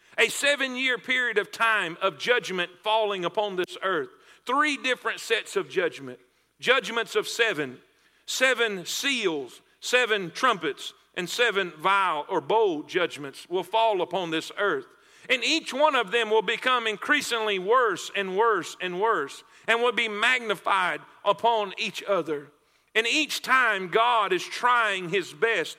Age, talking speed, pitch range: 50-69, 145 wpm, 195-265 Hz